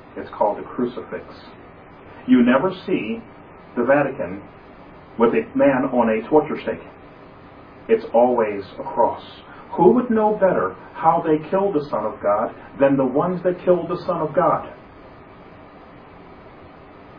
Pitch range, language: 120-175 Hz, English